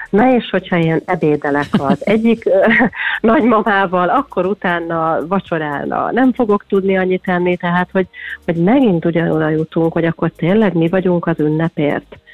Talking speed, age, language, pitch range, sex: 140 wpm, 30-49, Hungarian, 155-175 Hz, female